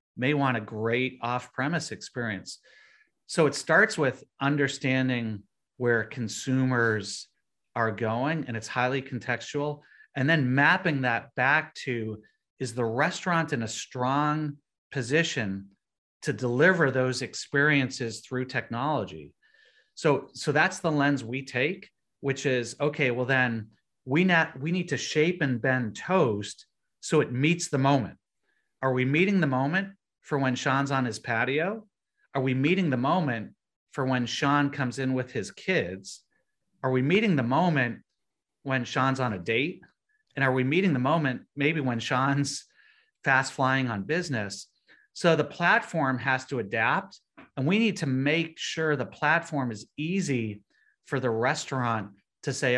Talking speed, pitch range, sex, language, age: 150 wpm, 125-150 Hz, male, English, 30-49